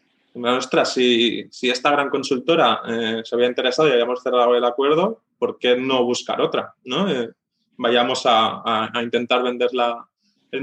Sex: male